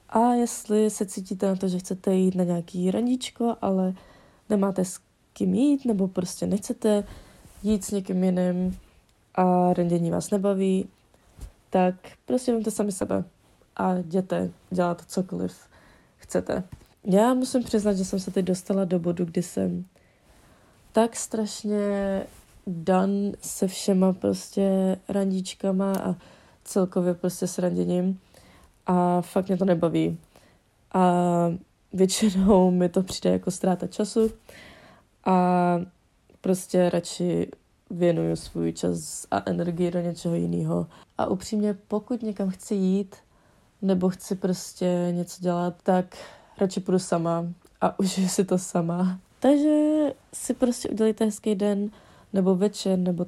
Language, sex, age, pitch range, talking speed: Czech, female, 20-39, 175-200 Hz, 130 wpm